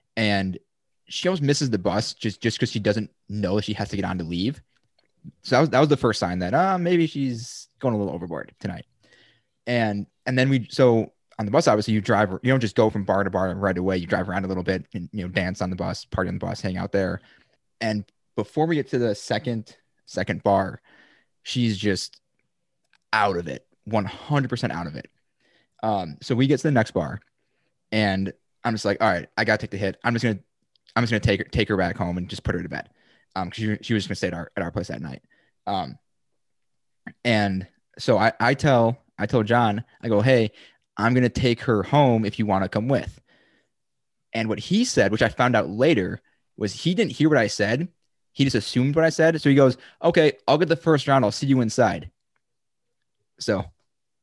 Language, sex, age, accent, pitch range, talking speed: English, male, 20-39, American, 100-130 Hz, 230 wpm